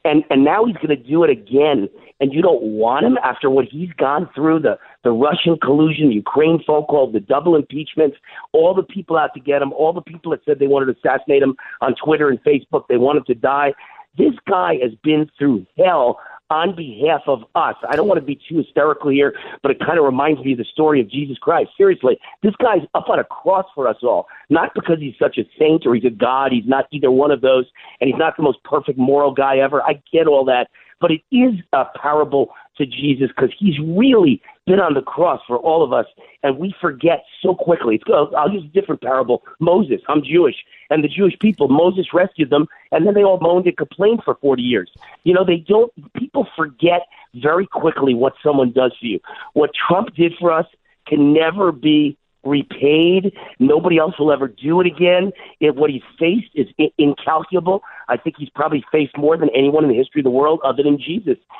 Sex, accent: male, American